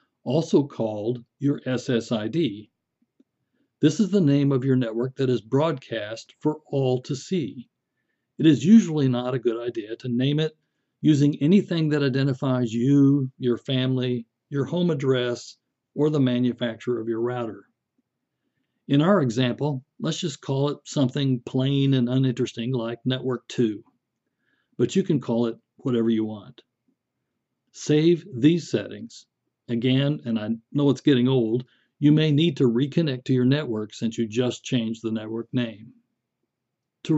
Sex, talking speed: male, 150 wpm